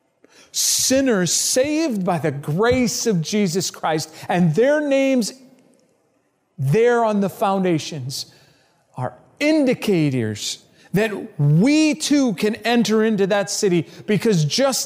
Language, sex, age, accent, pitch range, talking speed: English, male, 40-59, American, 170-245 Hz, 110 wpm